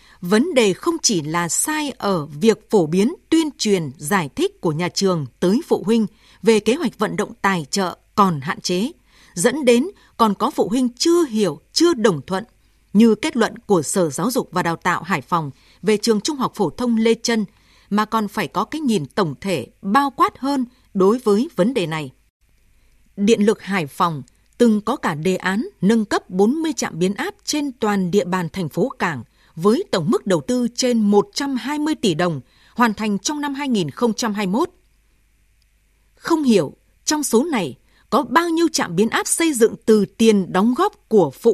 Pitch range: 185-250 Hz